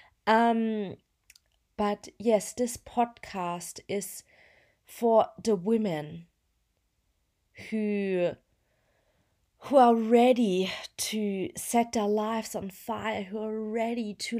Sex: female